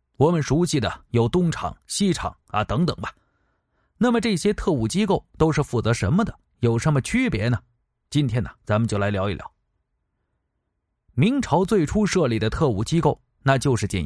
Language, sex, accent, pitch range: Chinese, male, native, 105-175 Hz